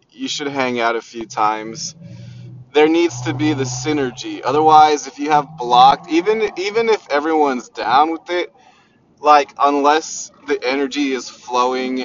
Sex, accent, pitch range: male, American, 115-150 Hz